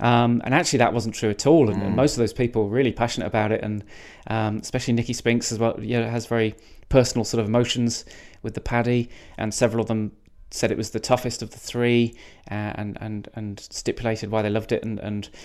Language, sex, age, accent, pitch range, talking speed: English, male, 20-39, British, 110-130 Hz, 230 wpm